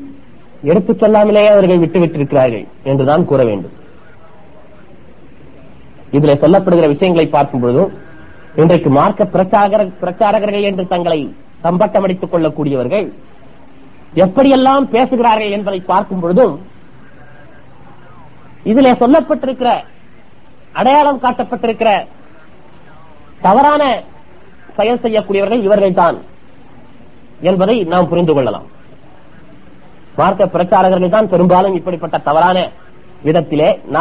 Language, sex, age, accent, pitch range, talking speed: Tamil, male, 30-49, native, 175-220 Hz, 80 wpm